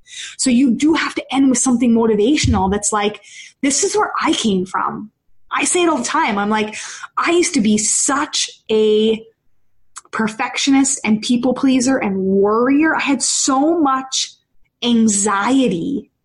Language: English